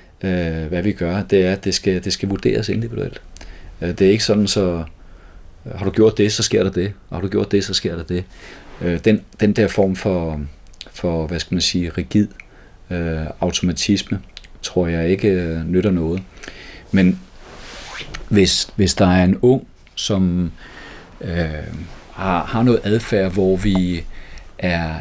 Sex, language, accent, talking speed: male, Danish, native, 175 wpm